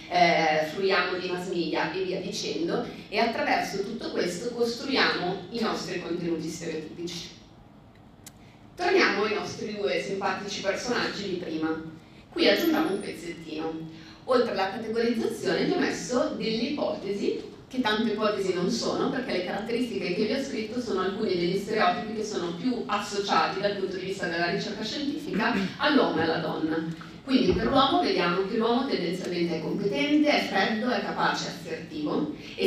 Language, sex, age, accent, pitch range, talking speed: Italian, female, 30-49, native, 175-230 Hz, 155 wpm